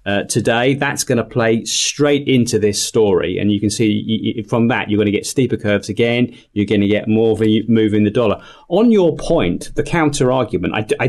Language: English